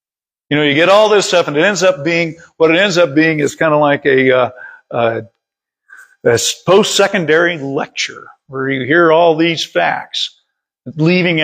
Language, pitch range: English, 140-190 Hz